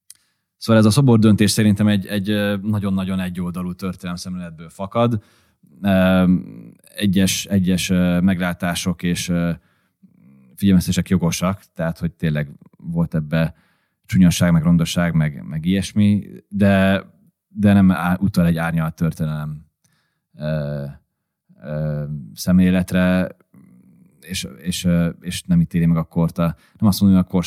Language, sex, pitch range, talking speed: Hungarian, male, 85-95 Hz, 120 wpm